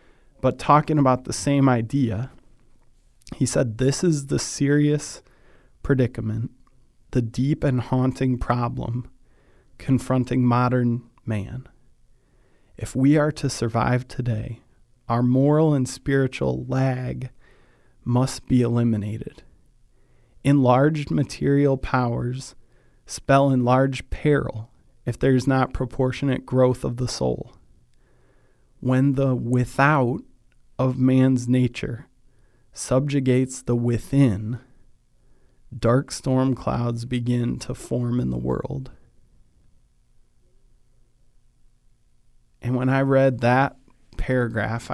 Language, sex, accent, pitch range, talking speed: English, male, American, 120-130 Hz, 95 wpm